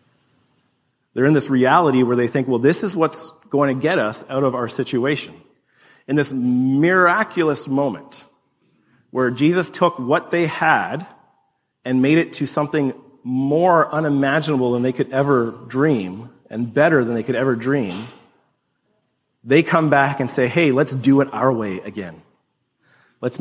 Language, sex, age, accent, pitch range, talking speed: English, male, 40-59, American, 130-160 Hz, 155 wpm